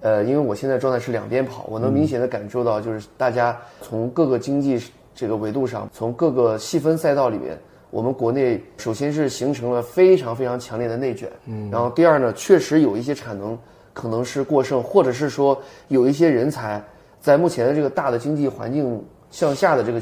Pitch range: 115-150 Hz